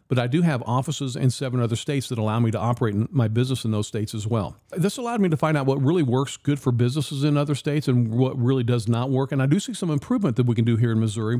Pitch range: 115-140 Hz